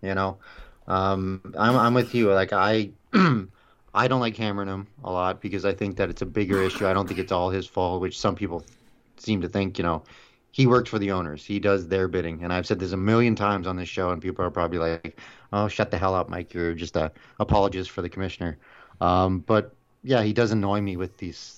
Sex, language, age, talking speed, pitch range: male, English, 30-49, 235 wpm, 95-110 Hz